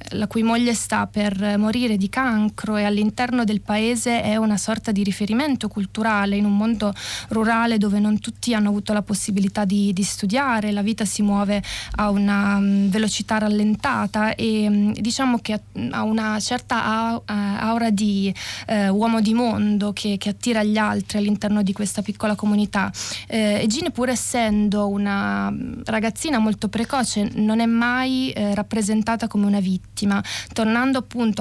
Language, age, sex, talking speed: Italian, 20-39, female, 155 wpm